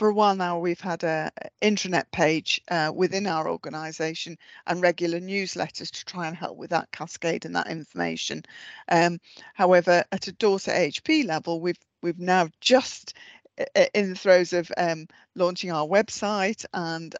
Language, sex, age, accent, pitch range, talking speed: English, female, 40-59, British, 170-195 Hz, 160 wpm